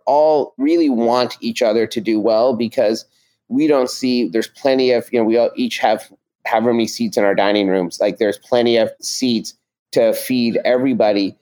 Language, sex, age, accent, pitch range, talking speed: English, male, 30-49, American, 110-145 Hz, 190 wpm